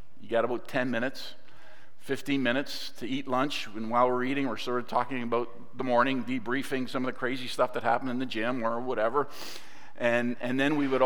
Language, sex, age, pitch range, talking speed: English, male, 50-69, 120-135 Hz, 210 wpm